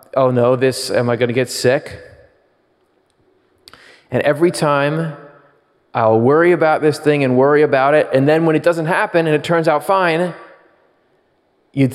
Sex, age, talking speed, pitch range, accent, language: male, 30-49, 160 wpm, 130-170 Hz, American, English